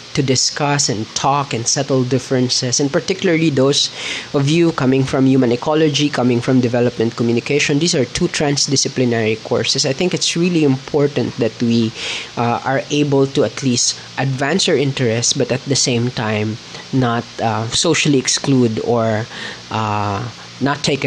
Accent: Filipino